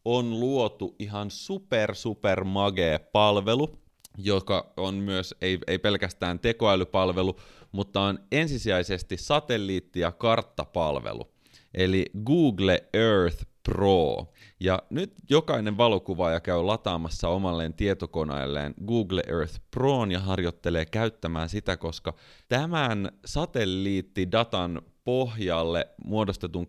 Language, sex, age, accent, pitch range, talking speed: Finnish, male, 30-49, native, 85-115 Hz, 100 wpm